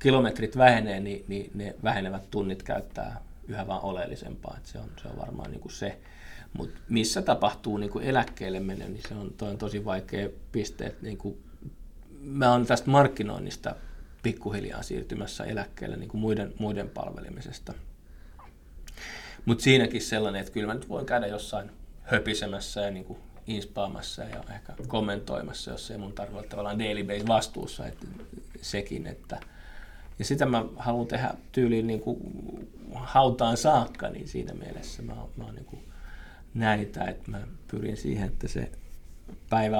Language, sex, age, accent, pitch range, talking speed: Finnish, male, 20-39, native, 95-115 Hz, 150 wpm